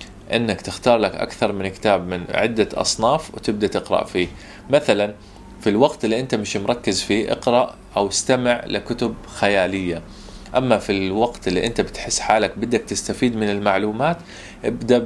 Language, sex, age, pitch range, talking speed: Arabic, male, 20-39, 95-110 Hz, 150 wpm